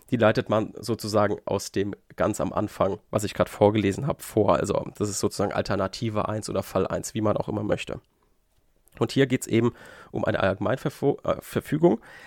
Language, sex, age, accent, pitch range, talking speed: German, male, 30-49, German, 105-140 Hz, 185 wpm